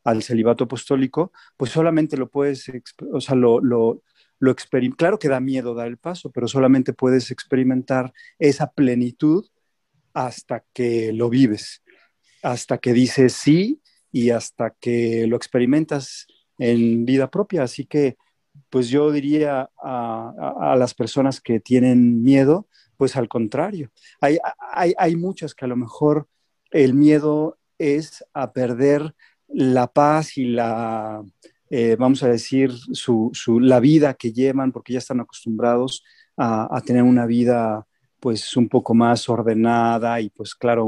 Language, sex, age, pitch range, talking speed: Spanish, male, 40-59, 115-135 Hz, 150 wpm